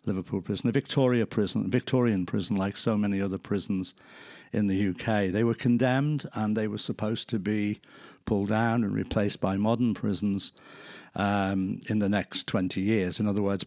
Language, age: English, 50-69